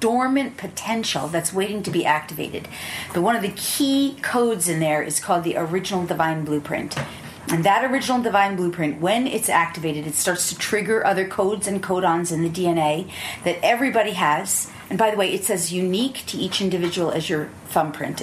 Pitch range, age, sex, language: 165-220 Hz, 40-59, female, English